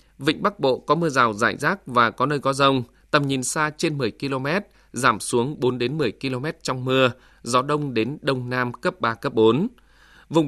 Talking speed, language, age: 200 wpm, Vietnamese, 20-39